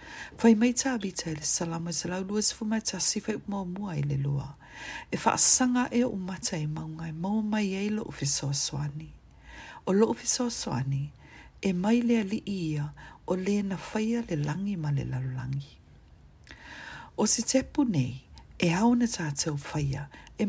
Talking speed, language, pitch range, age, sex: 150 wpm, English, 145-210 Hz, 50-69, female